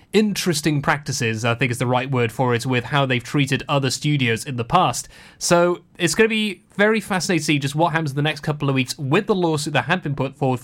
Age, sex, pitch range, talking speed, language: 30-49, male, 135-180 Hz, 255 wpm, English